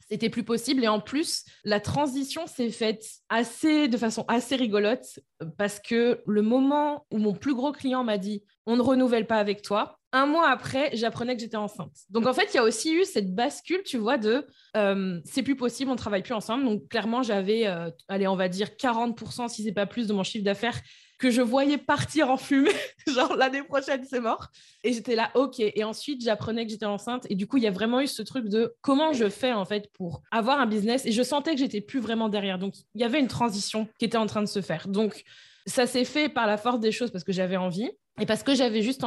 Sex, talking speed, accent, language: female, 250 wpm, French, French